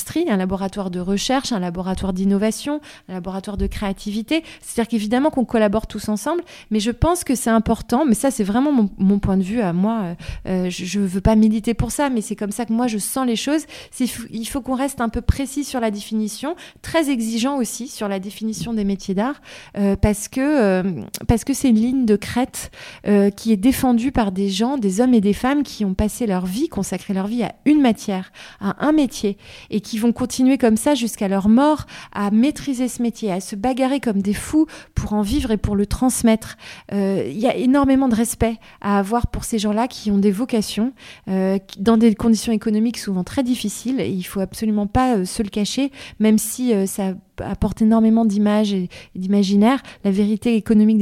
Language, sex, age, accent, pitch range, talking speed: French, female, 30-49, French, 200-250 Hz, 220 wpm